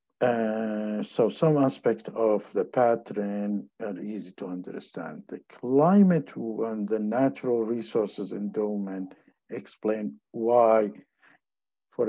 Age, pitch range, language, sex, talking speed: 60-79, 100-135 Hz, English, male, 105 wpm